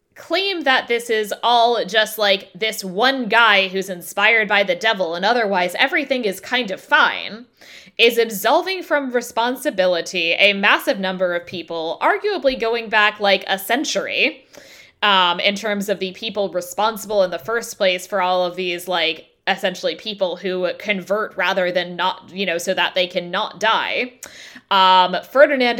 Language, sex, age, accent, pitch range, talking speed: English, female, 10-29, American, 175-230 Hz, 160 wpm